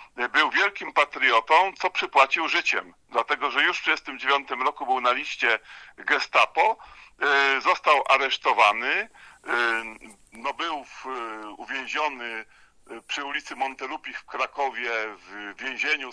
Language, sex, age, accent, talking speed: Polish, male, 50-69, native, 100 wpm